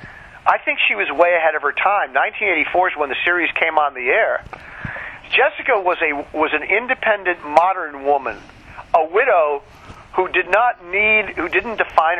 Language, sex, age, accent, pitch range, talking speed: English, male, 50-69, American, 145-180 Hz, 170 wpm